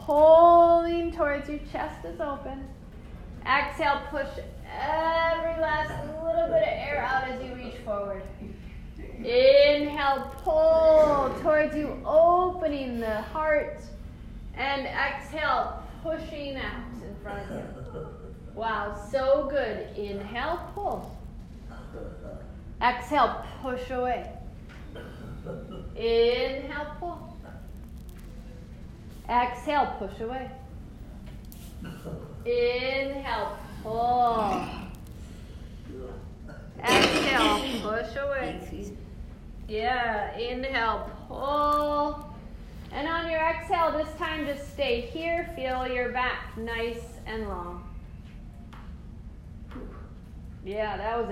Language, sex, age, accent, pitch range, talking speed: English, female, 30-49, American, 230-310 Hz, 85 wpm